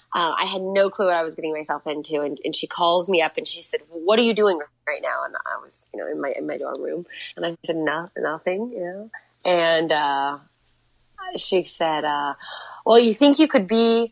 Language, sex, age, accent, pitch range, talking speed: English, female, 20-39, American, 165-220 Hz, 240 wpm